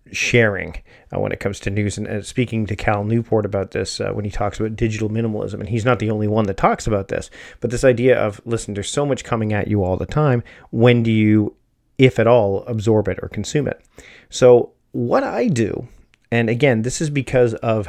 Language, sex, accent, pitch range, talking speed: English, male, American, 105-125 Hz, 225 wpm